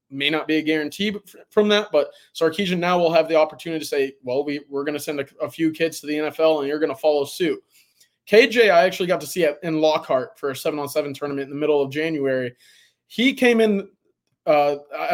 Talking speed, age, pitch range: 220 wpm, 20-39, 150-185 Hz